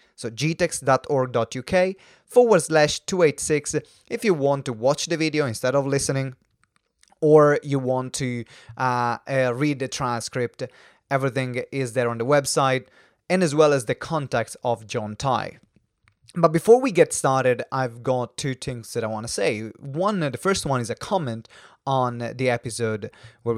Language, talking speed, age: English, 165 wpm, 20-39